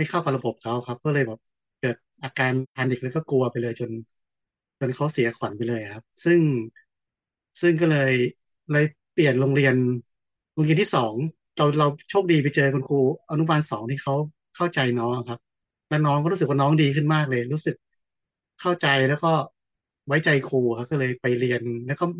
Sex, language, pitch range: male, Thai, 120-155 Hz